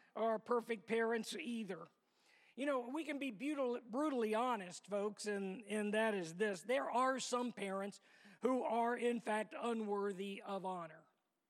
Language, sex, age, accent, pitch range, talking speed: English, male, 50-69, American, 210-250 Hz, 150 wpm